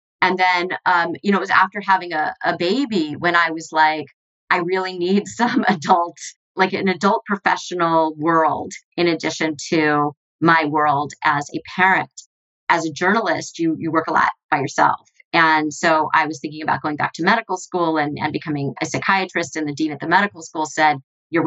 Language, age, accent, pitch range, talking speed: English, 30-49, American, 155-185 Hz, 195 wpm